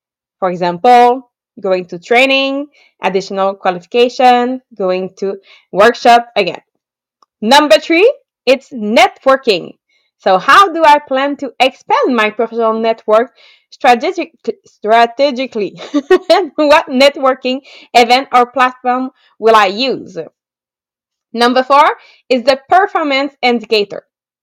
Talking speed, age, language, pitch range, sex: 100 wpm, 20-39, English, 215-275 Hz, female